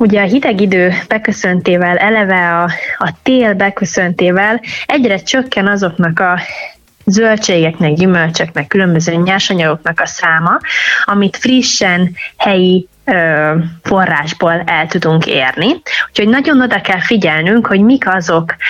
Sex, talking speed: female, 110 wpm